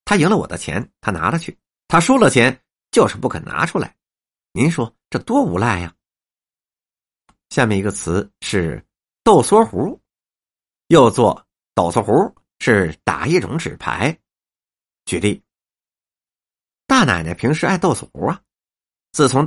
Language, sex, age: Chinese, male, 50-69